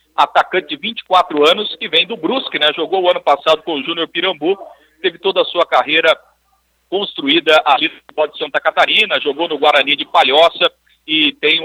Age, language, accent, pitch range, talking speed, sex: 50-69, Portuguese, Brazilian, 150-235 Hz, 180 wpm, male